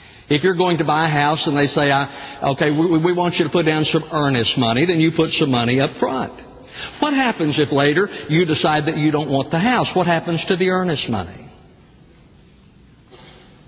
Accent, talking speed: American, 200 wpm